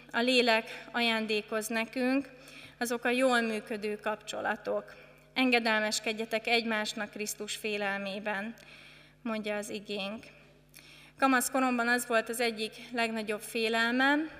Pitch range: 215-255 Hz